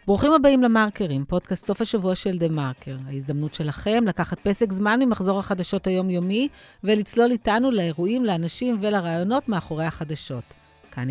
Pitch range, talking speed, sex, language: 145-205 Hz, 135 wpm, female, Hebrew